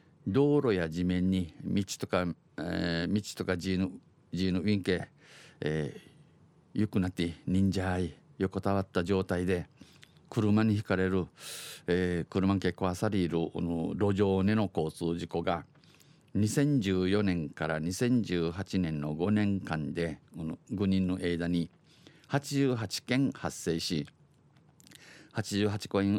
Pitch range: 90-105 Hz